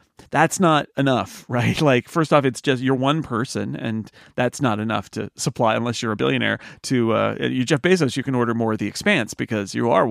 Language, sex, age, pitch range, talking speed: English, male, 40-59, 115-150 Hz, 220 wpm